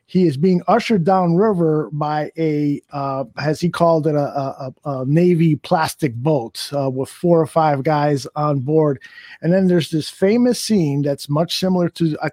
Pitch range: 145-175 Hz